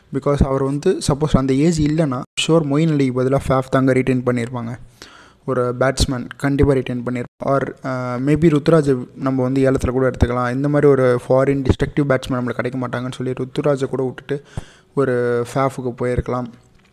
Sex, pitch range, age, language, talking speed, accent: male, 125-140 Hz, 20-39, Tamil, 155 wpm, native